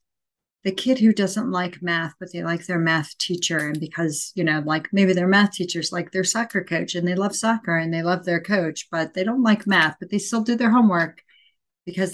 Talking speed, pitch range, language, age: 225 wpm, 170-205 Hz, English, 40-59